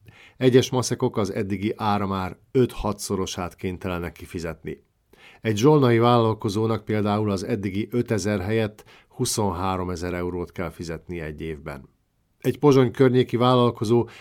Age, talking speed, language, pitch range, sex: 50-69, 120 wpm, Hungarian, 95-115 Hz, male